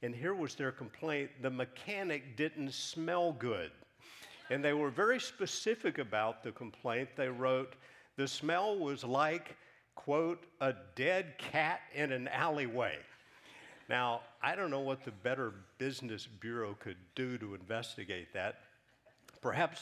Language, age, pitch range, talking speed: English, 50-69, 115-150 Hz, 140 wpm